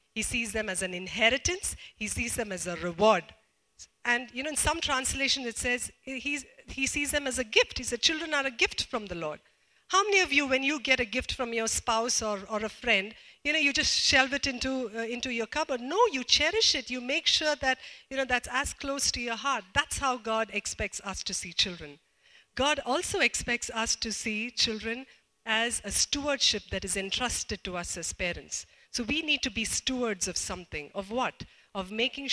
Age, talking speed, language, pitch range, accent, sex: 50-69, 215 wpm, English, 200-260 Hz, Indian, female